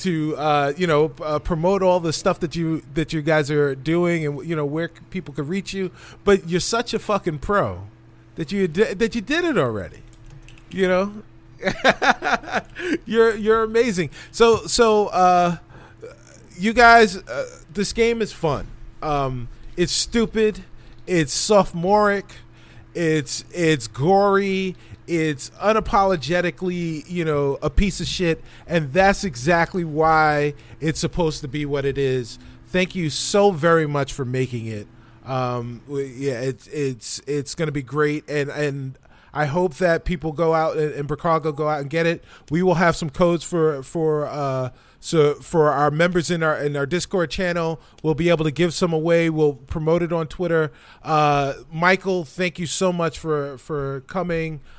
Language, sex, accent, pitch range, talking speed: English, male, American, 140-180 Hz, 165 wpm